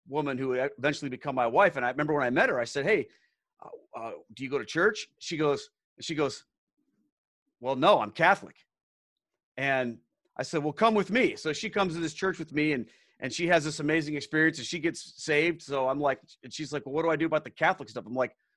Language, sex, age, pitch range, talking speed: English, male, 40-59, 130-165 Hz, 235 wpm